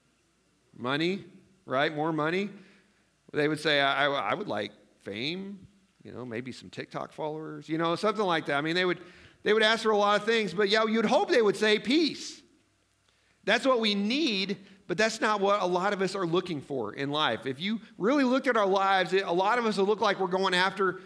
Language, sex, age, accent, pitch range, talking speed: English, male, 40-59, American, 165-210 Hz, 225 wpm